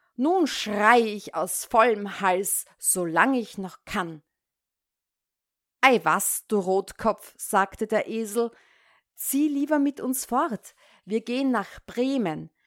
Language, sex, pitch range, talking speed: German, female, 170-255 Hz, 125 wpm